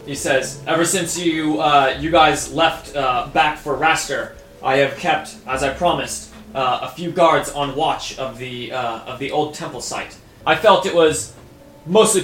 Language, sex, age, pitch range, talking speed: English, male, 20-39, 125-155 Hz, 185 wpm